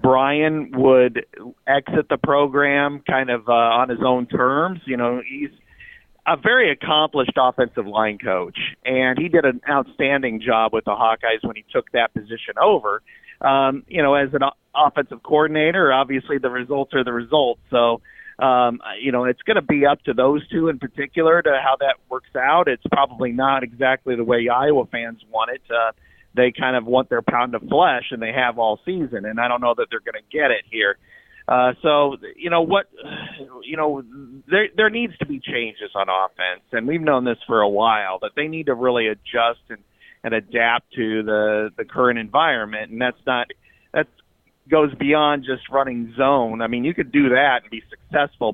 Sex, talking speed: male, 195 wpm